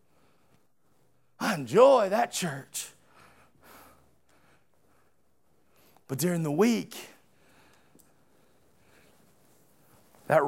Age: 40-59